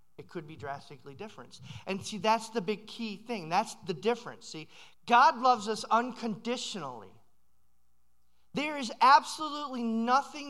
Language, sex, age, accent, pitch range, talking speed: English, male, 40-59, American, 160-245 Hz, 135 wpm